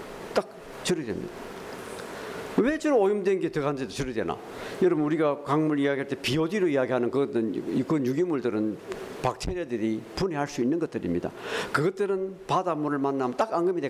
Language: Korean